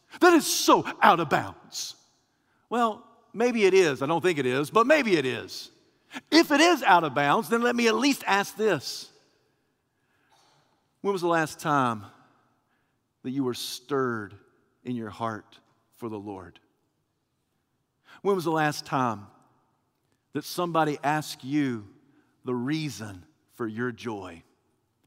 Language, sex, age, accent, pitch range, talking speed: English, male, 50-69, American, 130-205 Hz, 145 wpm